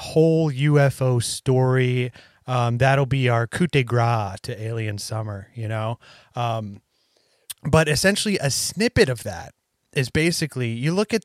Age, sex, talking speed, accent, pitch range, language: 30-49, male, 145 wpm, American, 115-145 Hz, English